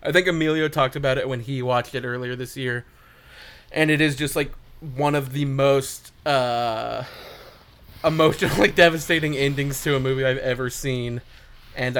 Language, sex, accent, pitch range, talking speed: English, male, American, 125-145 Hz, 165 wpm